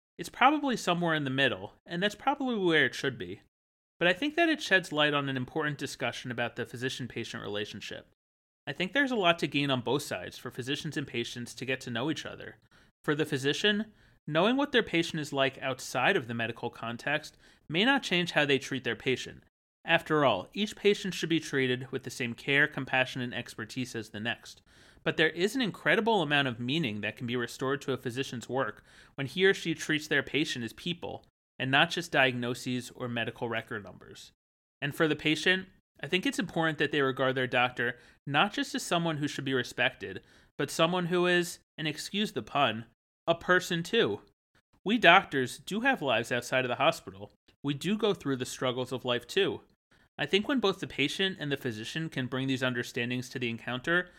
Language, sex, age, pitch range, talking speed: English, male, 30-49, 125-175 Hz, 205 wpm